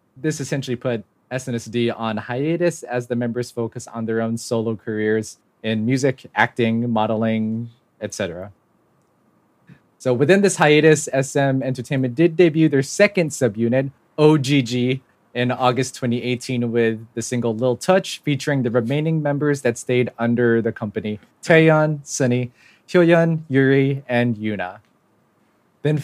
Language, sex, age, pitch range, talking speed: English, male, 20-39, 115-150 Hz, 130 wpm